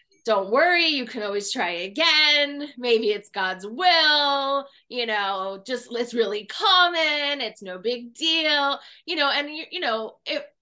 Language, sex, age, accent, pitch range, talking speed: English, female, 20-39, American, 210-295 Hz, 160 wpm